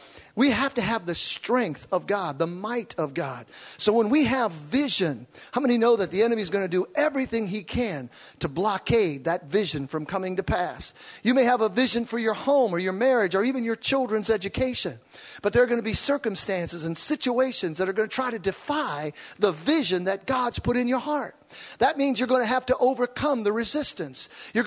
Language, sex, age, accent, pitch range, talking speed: English, male, 50-69, American, 210-290 Hz, 215 wpm